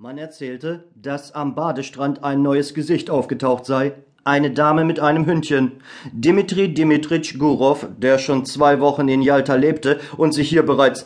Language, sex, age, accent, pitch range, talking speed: German, male, 40-59, German, 125-150 Hz, 155 wpm